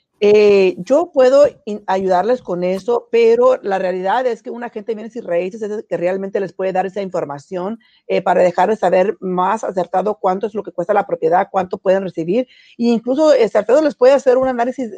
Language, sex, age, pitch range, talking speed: Spanish, female, 40-59, 195-250 Hz, 200 wpm